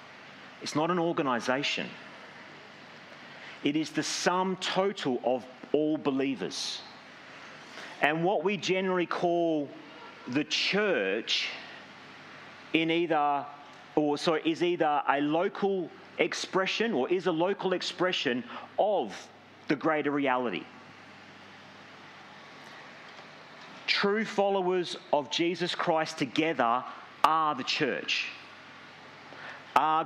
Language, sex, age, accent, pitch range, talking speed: English, male, 40-59, Australian, 150-195 Hz, 95 wpm